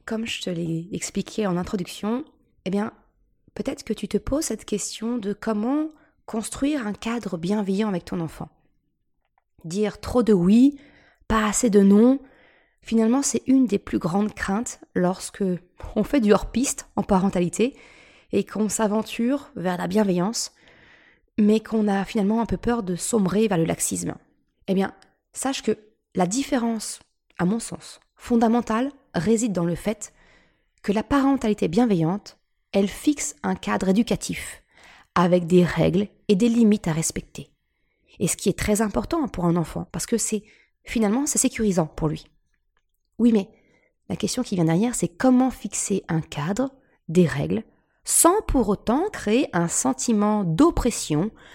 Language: French